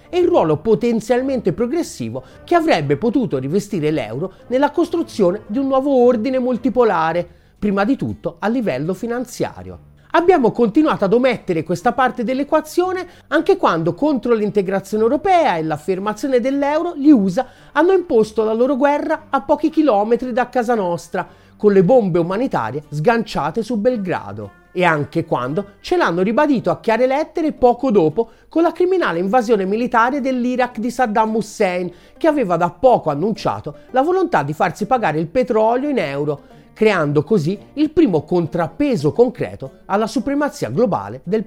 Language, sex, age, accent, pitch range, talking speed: Italian, male, 40-59, native, 180-275 Hz, 150 wpm